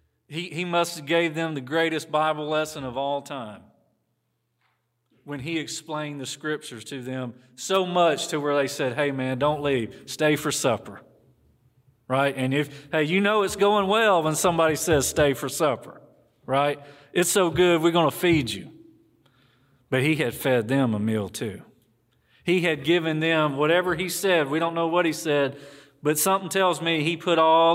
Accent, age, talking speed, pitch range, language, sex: American, 40-59, 185 wpm, 125-160 Hz, English, male